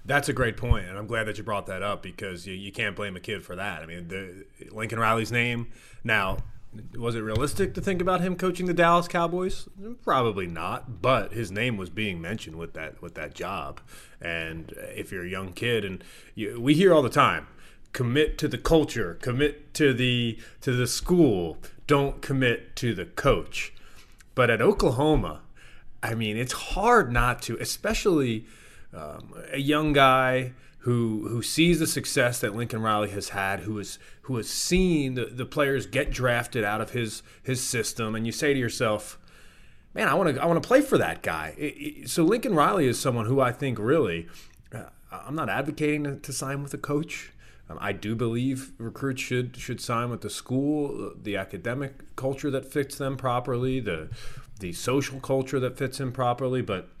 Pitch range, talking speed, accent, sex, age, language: 110-140 Hz, 195 wpm, American, male, 30-49, English